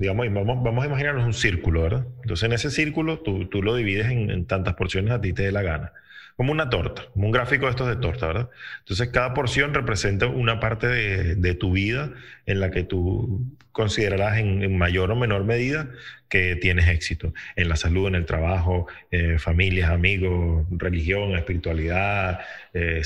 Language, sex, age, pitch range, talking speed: Spanish, male, 30-49, 90-120 Hz, 190 wpm